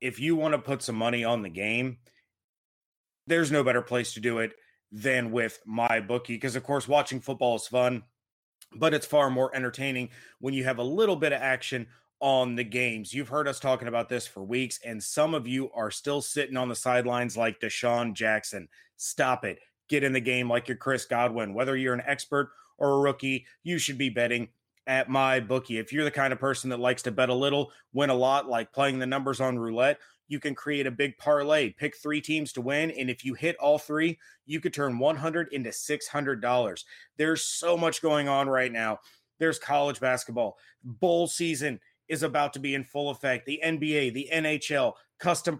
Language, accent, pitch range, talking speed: English, American, 125-150 Hz, 205 wpm